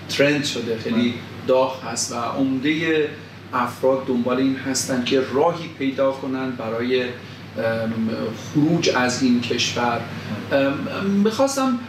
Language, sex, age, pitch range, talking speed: Persian, male, 40-59, 125-155 Hz, 105 wpm